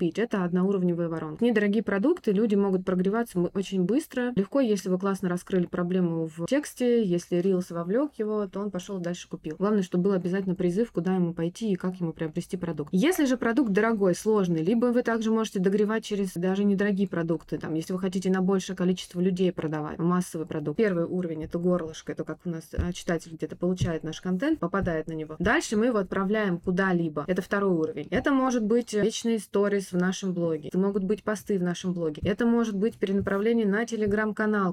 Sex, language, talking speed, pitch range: female, Russian, 190 wpm, 175-210 Hz